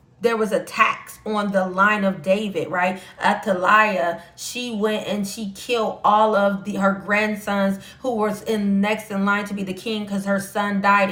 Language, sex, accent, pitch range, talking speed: English, female, American, 185-220 Hz, 190 wpm